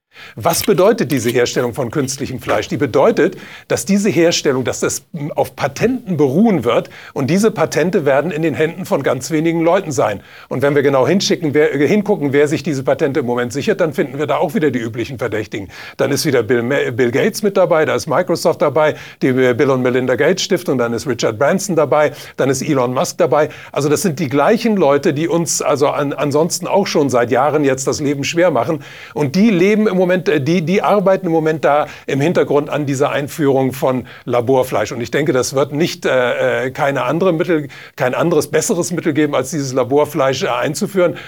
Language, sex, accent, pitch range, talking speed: German, male, German, 135-175 Hz, 200 wpm